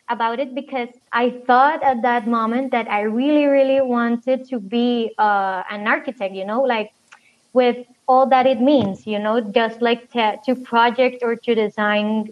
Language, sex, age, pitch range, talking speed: English, female, 20-39, 225-270 Hz, 175 wpm